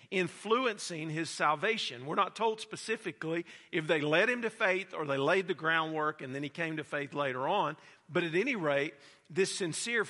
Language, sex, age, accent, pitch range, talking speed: English, male, 50-69, American, 150-195 Hz, 190 wpm